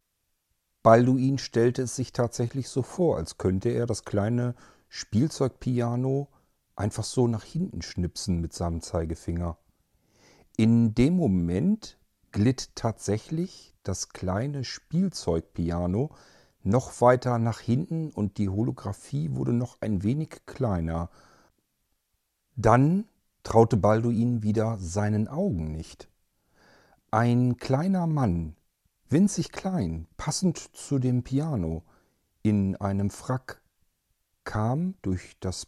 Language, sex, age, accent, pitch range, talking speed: German, male, 40-59, German, 100-140 Hz, 105 wpm